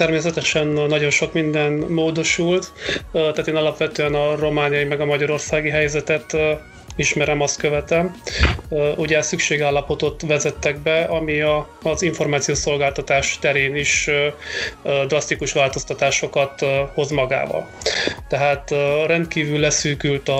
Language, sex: Hungarian, male